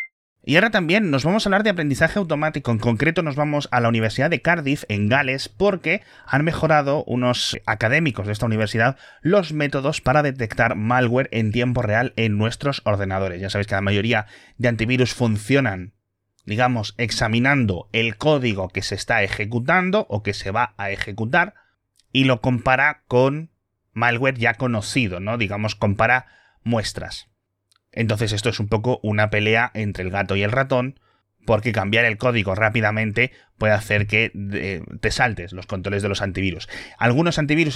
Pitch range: 105-140 Hz